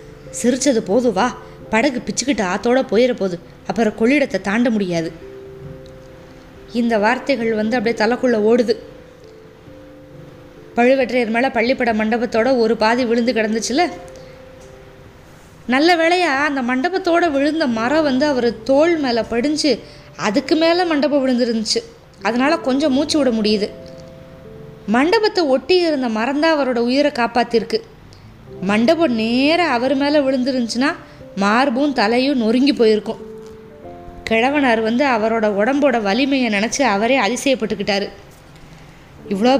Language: Tamil